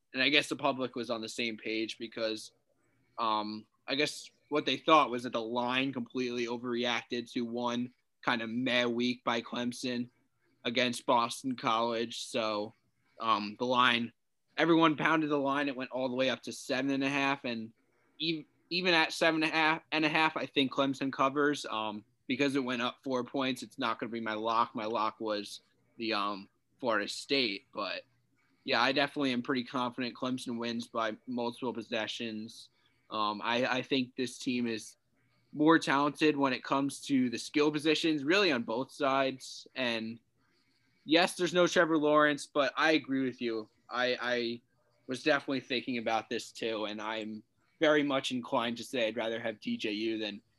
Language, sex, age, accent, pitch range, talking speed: English, male, 20-39, American, 115-140 Hz, 180 wpm